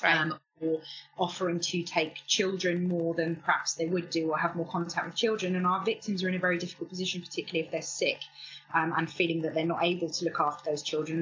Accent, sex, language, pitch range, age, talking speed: British, female, English, 160-185 Hz, 20-39, 230 wpm